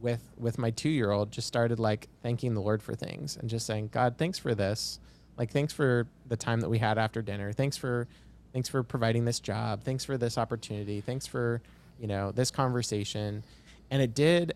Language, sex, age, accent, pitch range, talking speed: English, male, 20-39, American, 105-125 Hz, 200 wpm